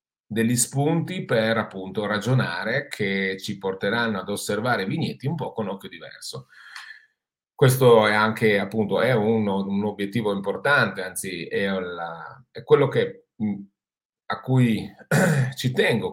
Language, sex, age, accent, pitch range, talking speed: Italian, male, 40-59, native, 100-135 Hz, 135 wpm